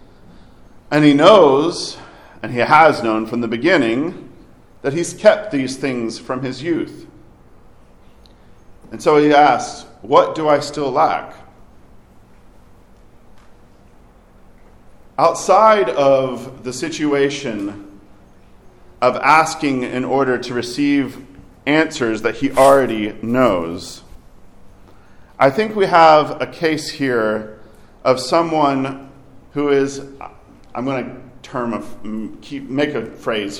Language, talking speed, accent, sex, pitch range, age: English, 110 wpm, American, male, 115-160 Hz, 40-59